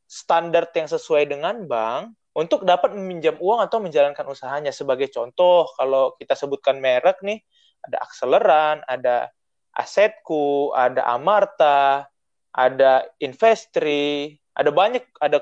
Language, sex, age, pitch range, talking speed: Indonesian, male, 20-39, 140-225 Hz, 115 wpm